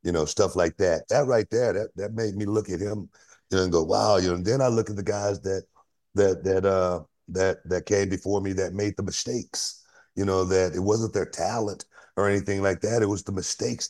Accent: American